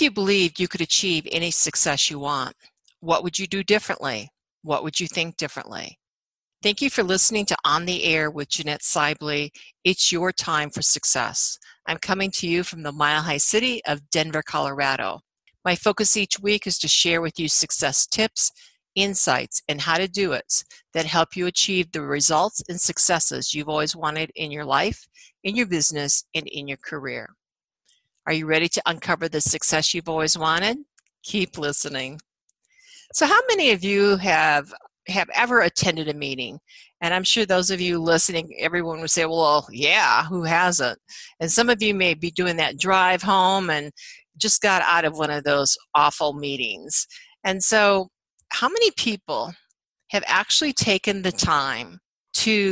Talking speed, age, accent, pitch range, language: 175 wpm, 50-69, American, 150-195 Hz, English